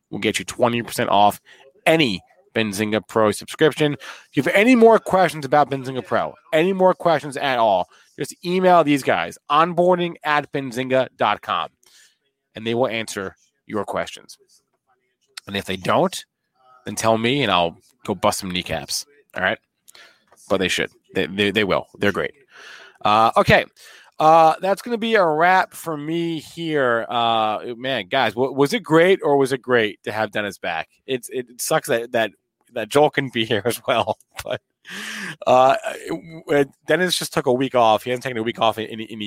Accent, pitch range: American, 105-150 Hz